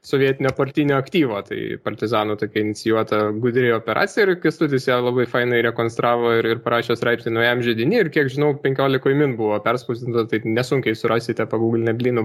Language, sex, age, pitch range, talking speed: English, male, 20-39, 115-150 Hz, 165 wpm